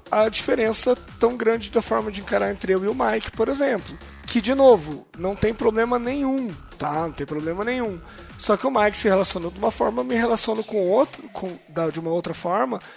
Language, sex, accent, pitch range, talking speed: Portuguese, male, Brazilian, 170-230 Hz, 215 wpm